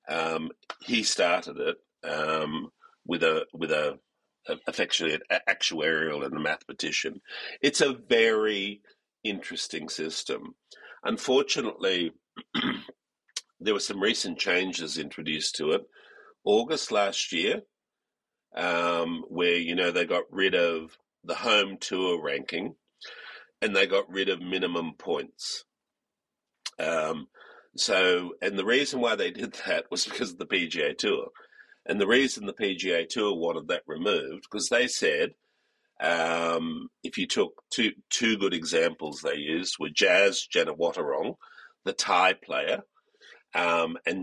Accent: Australian